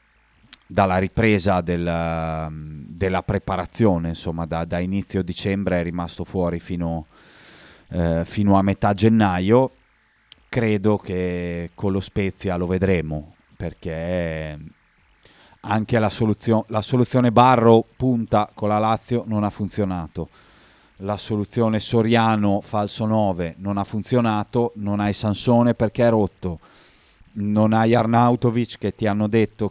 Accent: native